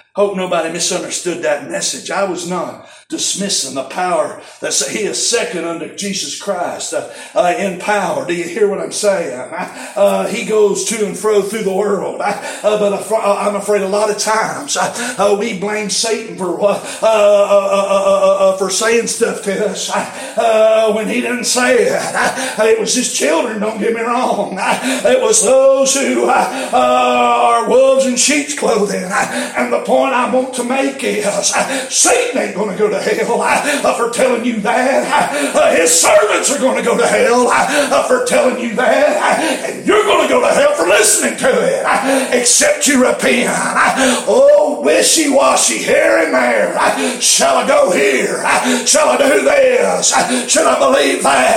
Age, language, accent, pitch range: 40-59, English, American, 200-255 Hz